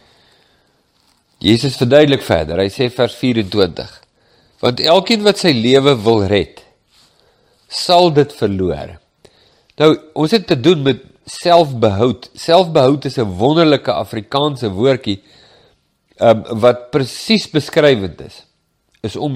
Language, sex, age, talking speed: English, male, 50-69, 115 wpm